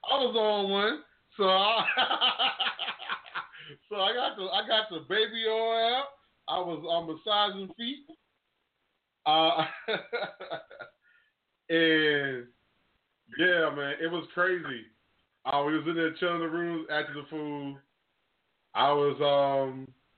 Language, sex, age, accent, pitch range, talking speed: English, male, 20-39, American, 140-200 Hz, 115 wpm